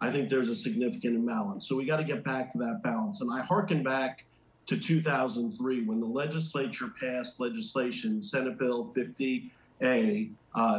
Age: 50-69